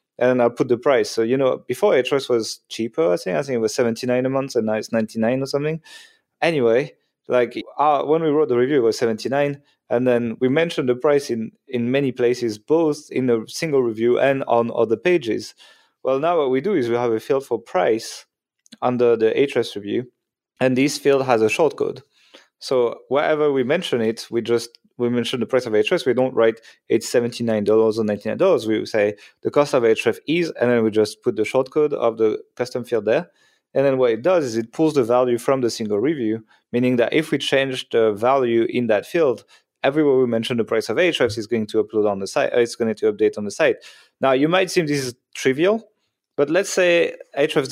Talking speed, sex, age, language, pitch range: 225 wpm, male, 30-49, English, 115-150 Hz